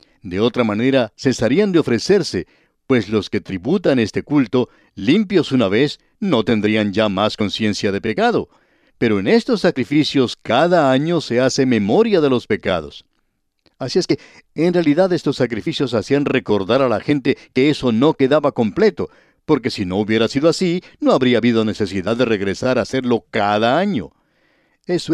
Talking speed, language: 160 wpm, Spanish